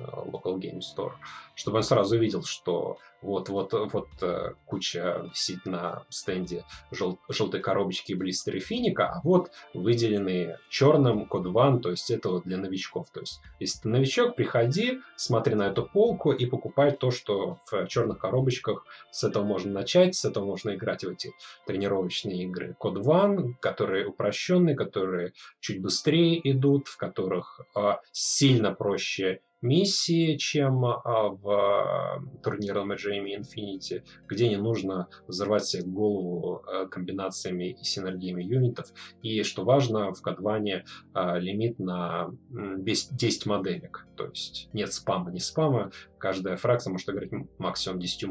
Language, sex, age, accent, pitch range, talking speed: Russian, male, 20-39, native, 95-135 Hz, 140 wpm